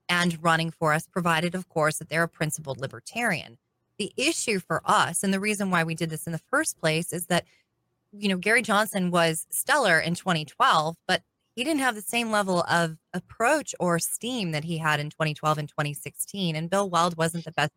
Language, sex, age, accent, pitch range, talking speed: English, female, 20-39, American, 155-200 Hz, 205 wpm